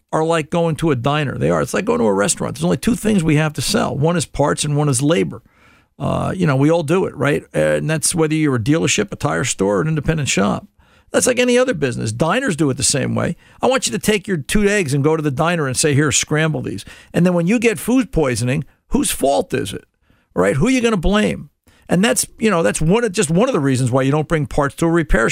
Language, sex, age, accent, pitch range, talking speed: English, male, 50-69, American, 150-200 Hz, 275 wpm